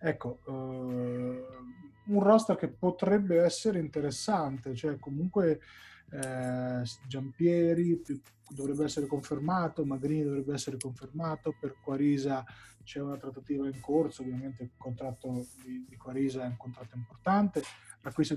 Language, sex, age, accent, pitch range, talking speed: Italian, male, 20-39, native, 125-150 Hz, 115 wpm